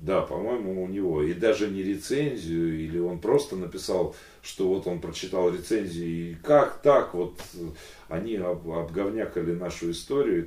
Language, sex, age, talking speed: Russian, male, 30-49, 150 wpm